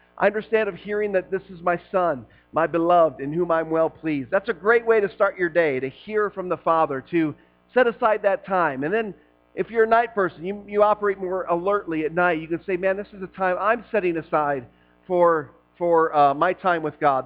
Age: 40-59